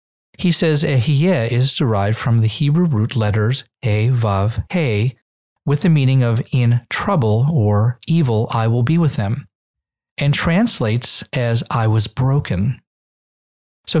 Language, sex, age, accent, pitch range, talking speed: English, male, 40-59, American, 110-150 Hz, 145 wpm